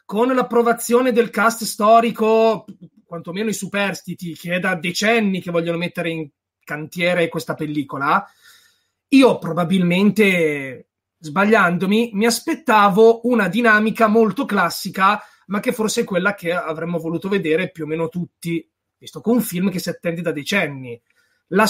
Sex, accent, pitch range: male, native, 170-225 Hz